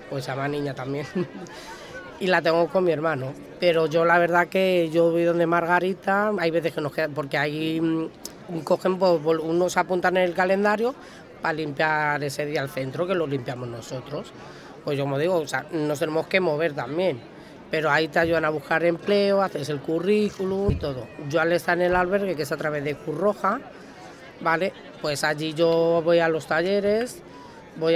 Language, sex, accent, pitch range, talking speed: Spanish, female, Spanish, 155-180 Hz, 185 wpm